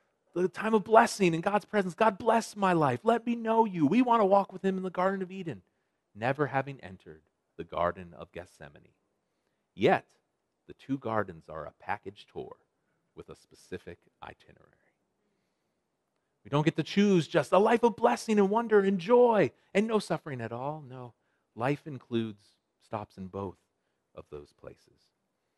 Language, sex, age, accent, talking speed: English, male, 40-59, American, 170 wpm